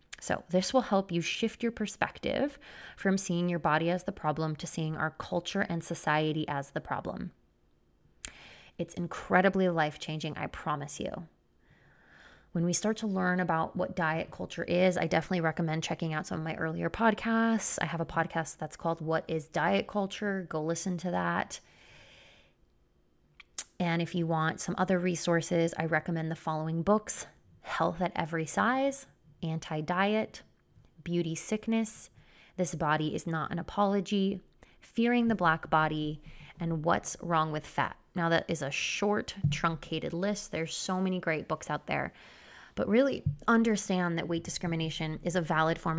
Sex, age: female, 20-39